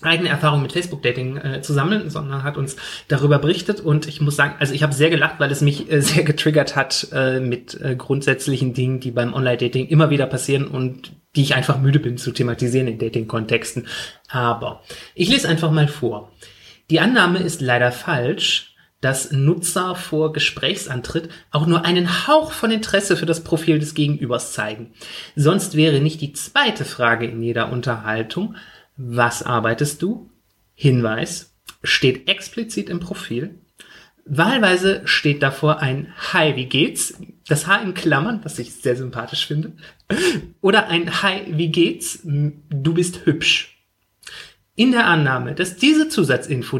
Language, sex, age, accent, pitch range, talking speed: German, male, 30-49, German, 130-170 Hz, 155 wpm